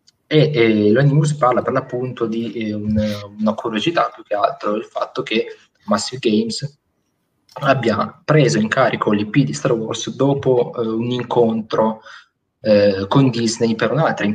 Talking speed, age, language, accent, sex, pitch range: 160 wpm, 20-39, Italian, native, male, 105-120 Hz